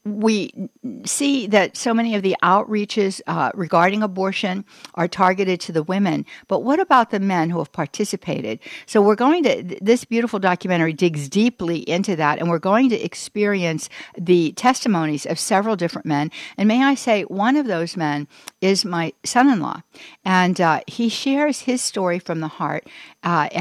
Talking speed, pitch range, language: 175 wpm, 160-205 Hz, English